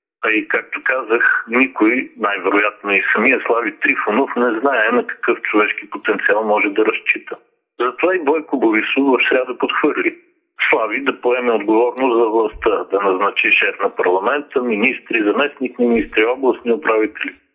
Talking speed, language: 140 wpm, Bulgarian